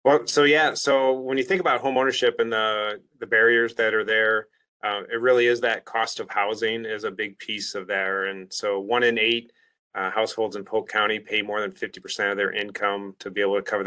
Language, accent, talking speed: English, American, 230 wpm